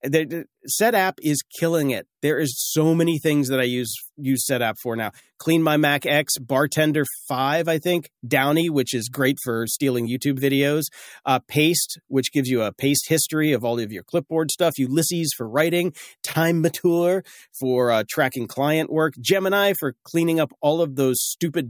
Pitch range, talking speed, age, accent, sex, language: 125-160 Hz, 185 wpm, 40-59, American, male, English